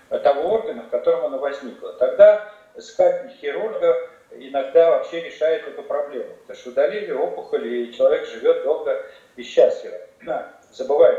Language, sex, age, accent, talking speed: Russian, male, 40-59, native, 135 wpm